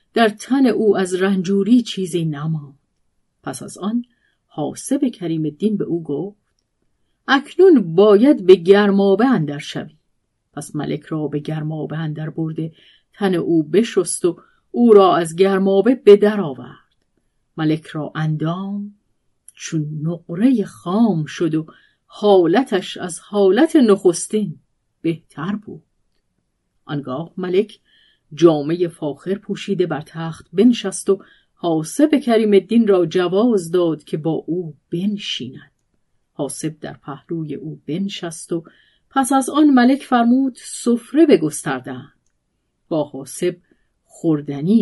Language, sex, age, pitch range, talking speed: Persian, female, 40-59, 160-215 Hz, 120 wpm